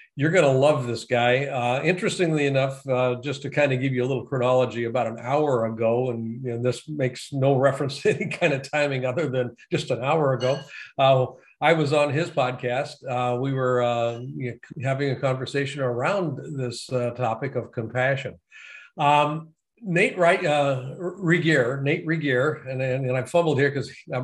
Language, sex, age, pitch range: English, male, 50-69, 125-155 Hz